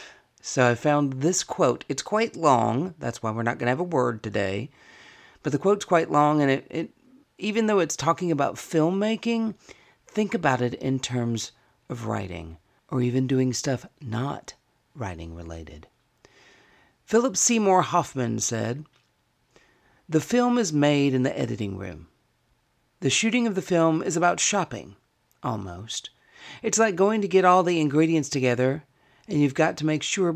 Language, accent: English, American